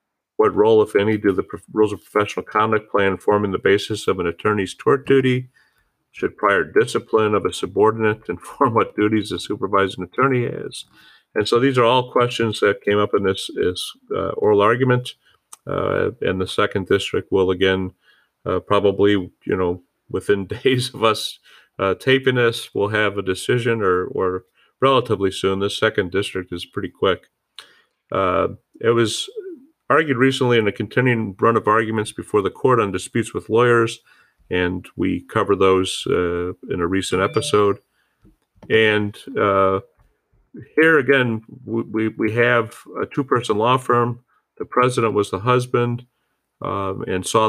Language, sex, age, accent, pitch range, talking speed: English, male, 40-59, American, 100-125 Hz, 160 wpm